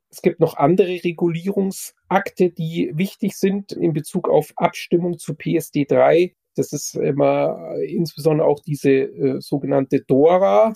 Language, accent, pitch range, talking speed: German, German, 140-170 Hz, 130 wpm